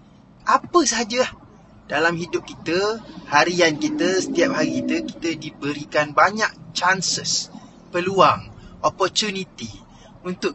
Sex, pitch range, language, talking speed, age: male, 145-185 Hz, Malay, 95 wpm, 20-39